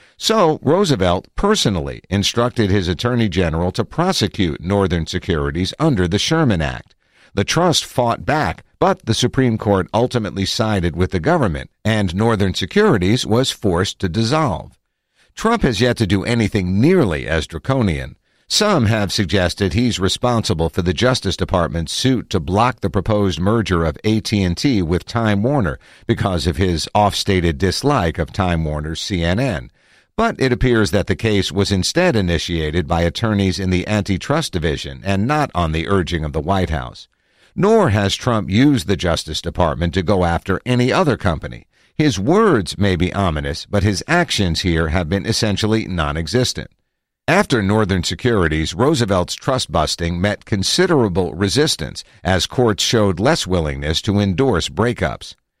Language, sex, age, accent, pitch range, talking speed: English, male, 50-69, American, 90-115 Hz, 150 wpm